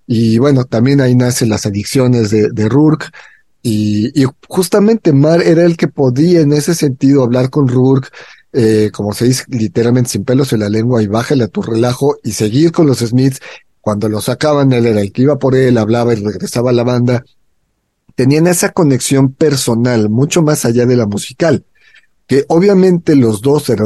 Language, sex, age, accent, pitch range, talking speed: Spanish, male, 40-59, Mexican, 110-145 Hz, 190 wpm